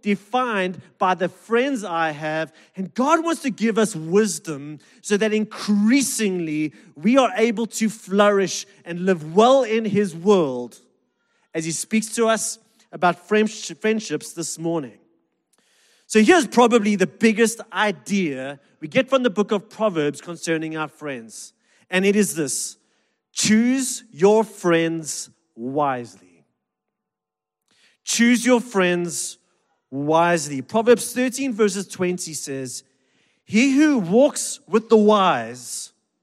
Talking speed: 125 wpm